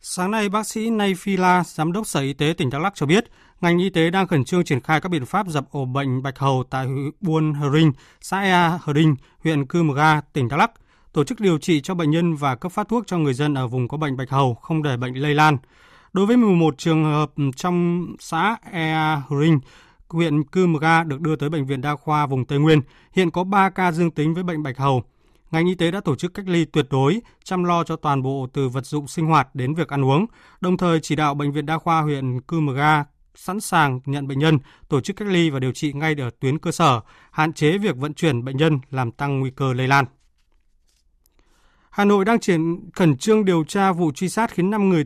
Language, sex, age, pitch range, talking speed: Vietnamese, male, 20-39, 140-175 Hz, 245 wpm